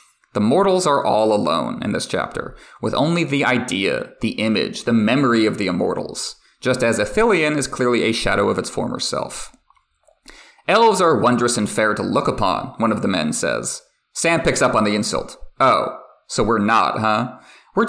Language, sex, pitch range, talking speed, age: English, male, 110-155 Hz, 185 wpm, 30-49